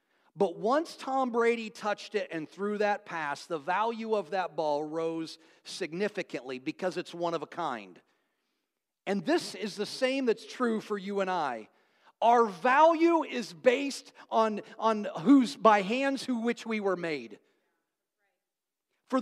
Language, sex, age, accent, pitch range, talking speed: English, male, 40-59, American, 210-270 Hz, 155 wpm